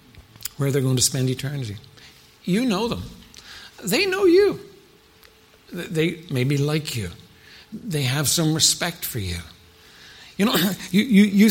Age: 60-79